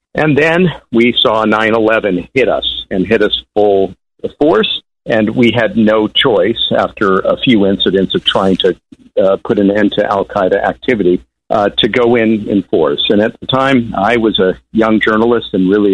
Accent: American